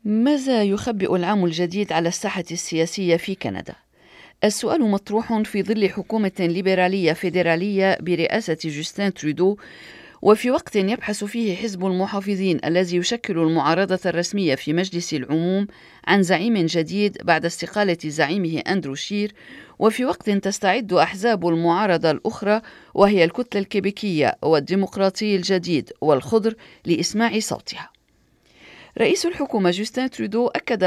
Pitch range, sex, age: 170-210 Hz, female, 40-59